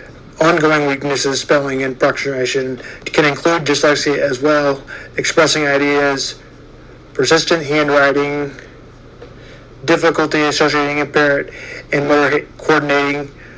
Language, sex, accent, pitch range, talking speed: English, male, American, 135-150 Hz, 90 wpm